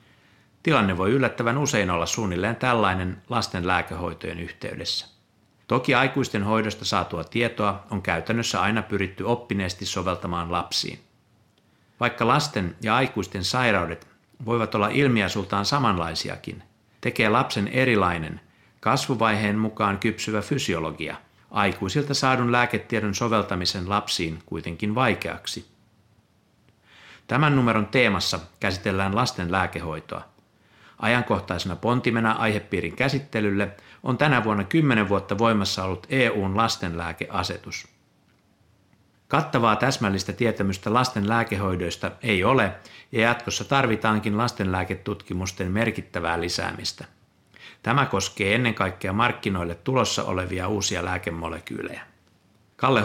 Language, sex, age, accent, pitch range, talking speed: Finnish, male, 60-79, native, 95-120 Hz, 95 wpm